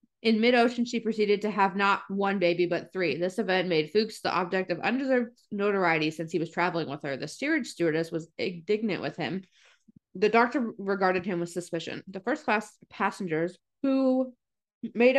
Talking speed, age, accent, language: 175 wpm, 20-39, American, English